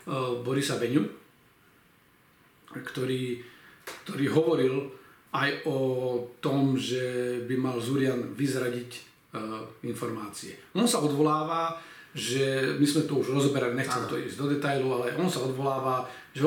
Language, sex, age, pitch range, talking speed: Slovak, male, 40-59, 130-155 Hz, 120 wpm